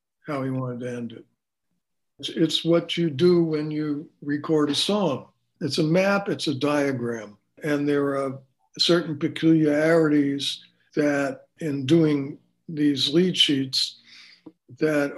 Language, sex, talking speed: English, male, 130 wpm